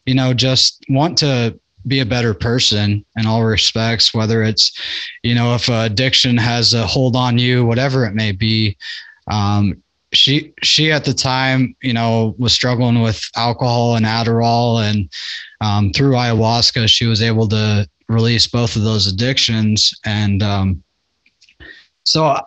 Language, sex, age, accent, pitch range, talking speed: English, male, 20-39, American, 110-130 Hz, 150 wpm